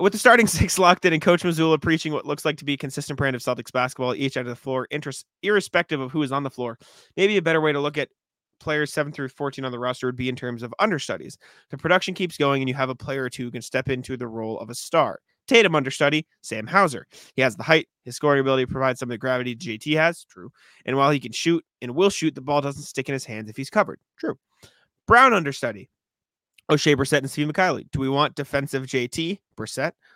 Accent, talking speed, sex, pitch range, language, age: American, 250 wpm, male, 130-155 Hz, English, 20-39